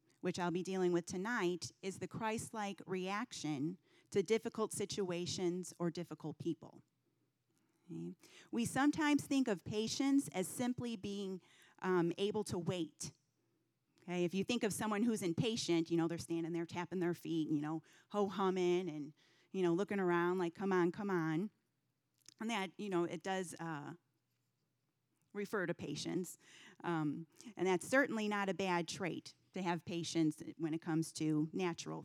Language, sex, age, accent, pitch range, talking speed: English, female, 30-49, American, 165-205 Hz, 155 wpm